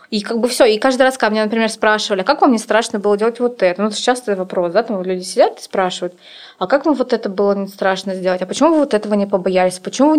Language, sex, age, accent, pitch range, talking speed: Russian, female, 20-39, native, 195-245 Hz, 295 wpm